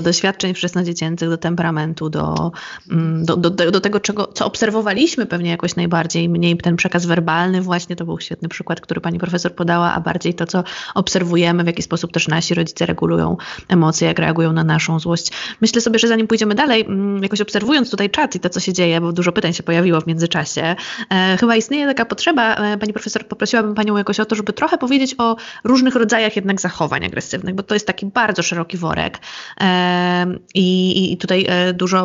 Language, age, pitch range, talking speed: Polish, 20-39, 170-200 Hz, 190 wpm